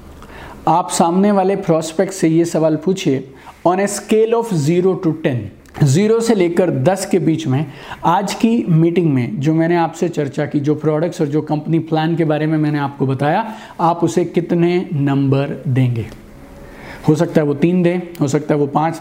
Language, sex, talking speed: Hindi, male, 185 wpm